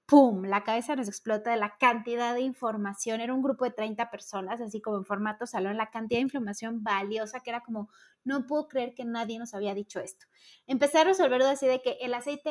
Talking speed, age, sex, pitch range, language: 220 wpm, 20-39, female, 215-270 Hz, Spanish